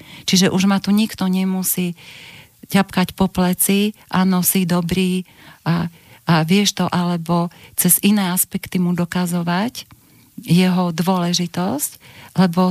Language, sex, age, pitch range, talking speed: Slovak, female, 40-59, 170-195 Hz, 120 wpm